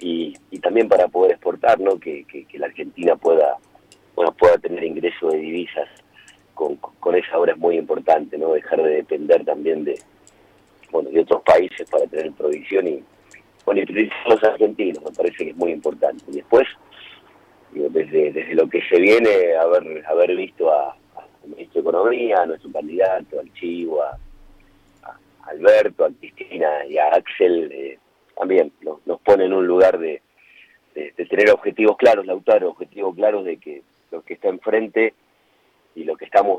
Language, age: Spanish, 40-59